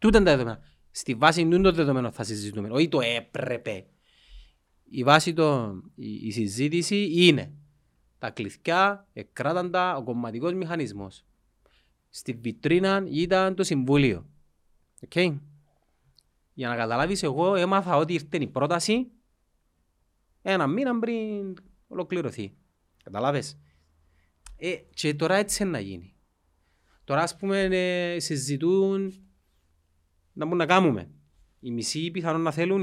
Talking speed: 120 wpm